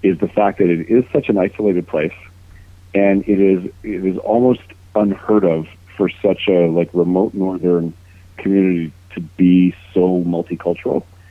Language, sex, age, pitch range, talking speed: English, male, 50-69, 90-105 Hz, 155 wpm